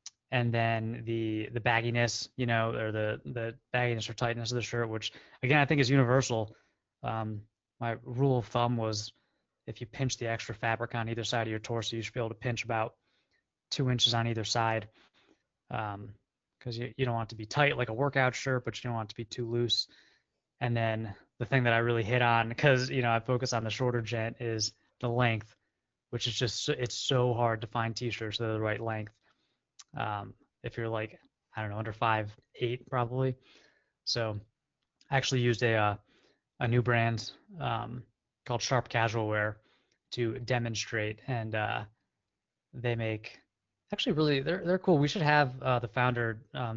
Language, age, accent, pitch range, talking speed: English, 20-39, American, 110-125 Hz, 195 wpm